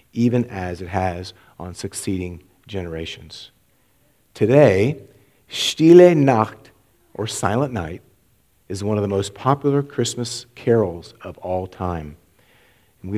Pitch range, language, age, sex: 100-140 Hz, English, 40-59, male